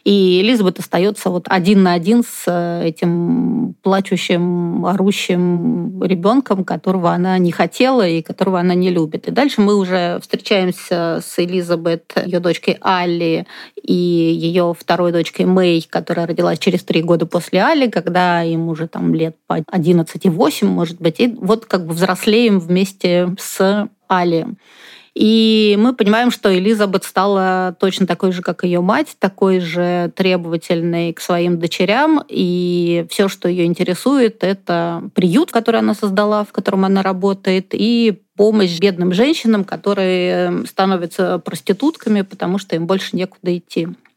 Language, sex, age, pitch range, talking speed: Russian, female, 30-49, 175-210 Hz, 145 wpm